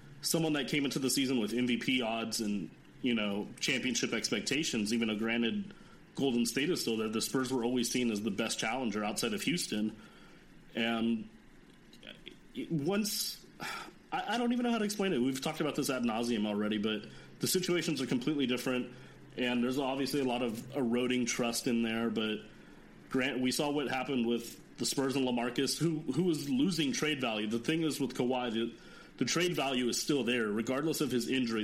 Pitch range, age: 115-140 Hz, 30-49